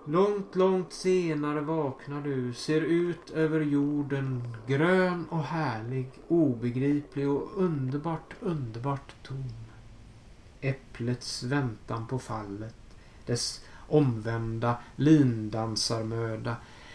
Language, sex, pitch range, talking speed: Swedish, male, 115-145 Hz, 85 wpm